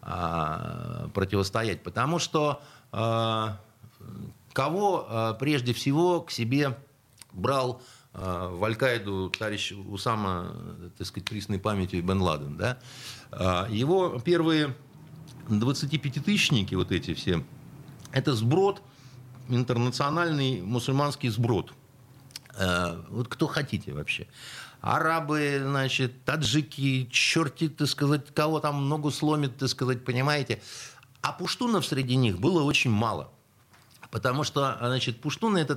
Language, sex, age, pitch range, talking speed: Russian, male, 50-69, 110-150 Hz, 105 wpm